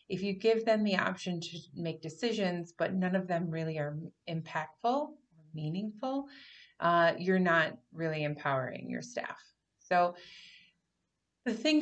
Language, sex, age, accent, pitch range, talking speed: English, female, 30-49, American, 165-200 Hz, 140 wpm